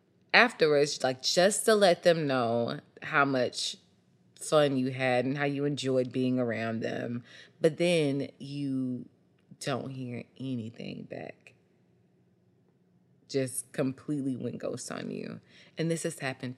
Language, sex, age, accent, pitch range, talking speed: English, female, 20-39, American, 130-180 Hz, 130 wpm